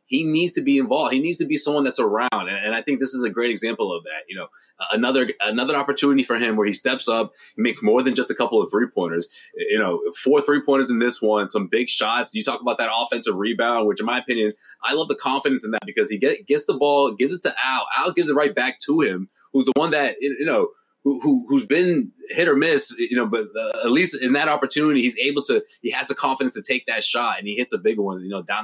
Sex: male